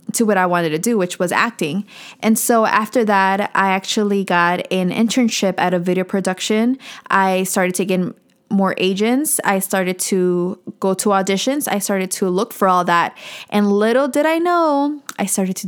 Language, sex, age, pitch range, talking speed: English, female, 20-39, 185-230 Hz, 190 wpm